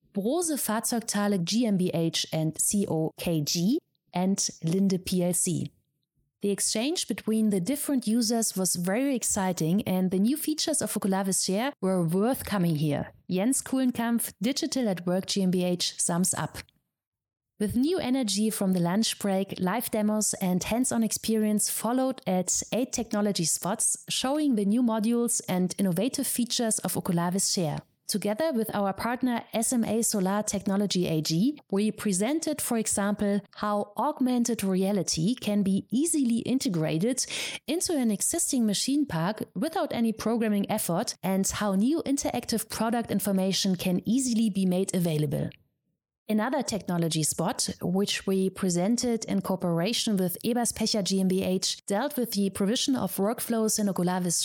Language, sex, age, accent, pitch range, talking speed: English, female, 30-49, German, 185-235 Hz, 135 wpm